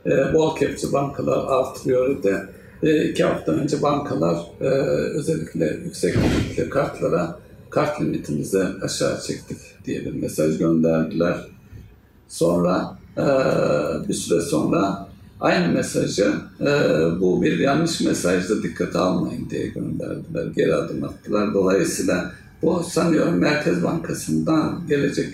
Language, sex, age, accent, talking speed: Turkish, male, 60-79, native, 110 wpm